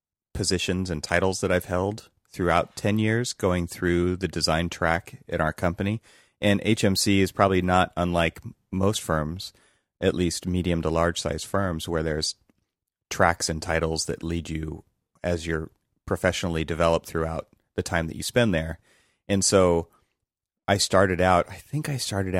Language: English